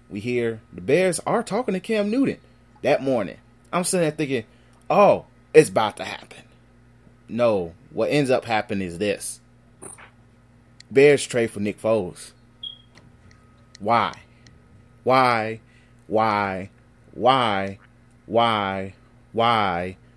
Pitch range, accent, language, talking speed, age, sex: 110-130 Hz, American, English, 115 wpm, 30-49, male